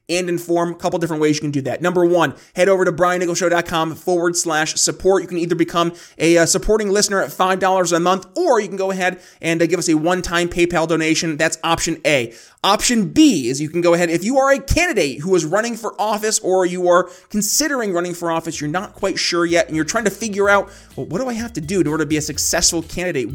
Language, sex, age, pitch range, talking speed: English, male, 30-49, 165-205 Hz, 240 wpm